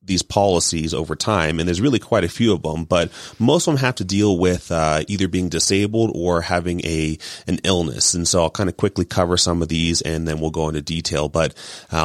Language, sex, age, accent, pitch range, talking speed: English, male, 30-49, American, 80-90 Hz, 235 wpm